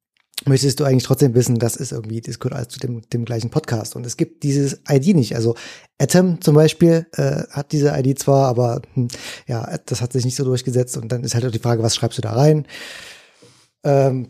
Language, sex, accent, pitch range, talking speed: German, male, German, 115-135 Hz, 220 wpm